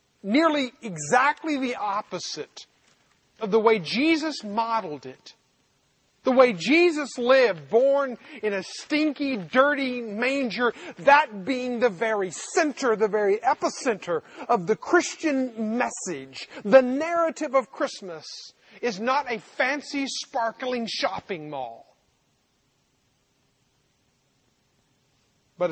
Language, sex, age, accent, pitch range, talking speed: English, male, 40-59, American, 145-245 Hz, 105 wpm